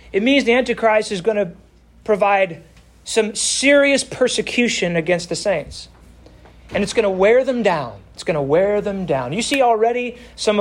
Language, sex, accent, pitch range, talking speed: English, male, American, 155-205 Hz, 175 wpm